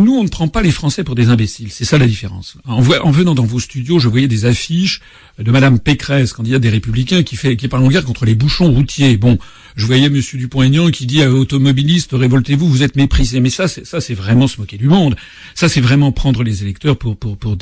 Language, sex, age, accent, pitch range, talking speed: French, male, 50-69, French, 120-155 Hz, 250 wpm